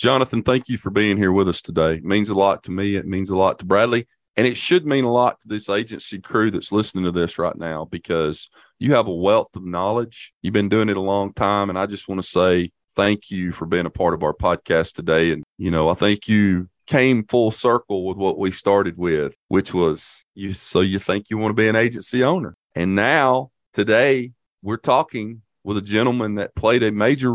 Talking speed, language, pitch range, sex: 235 wpm, English, 100-125 Hz, male